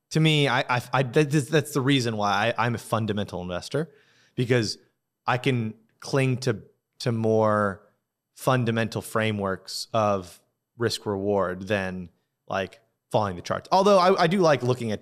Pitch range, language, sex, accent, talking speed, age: 105-130 Hz, English, male, American, 150 wpm, 20-39